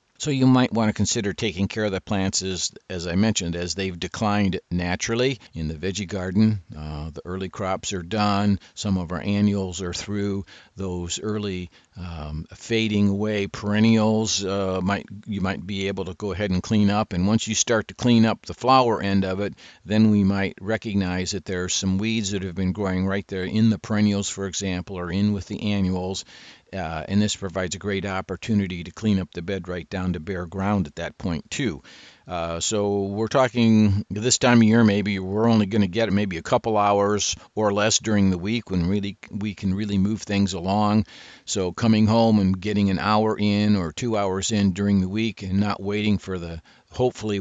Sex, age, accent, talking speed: male, 50-69, American, 205 wpm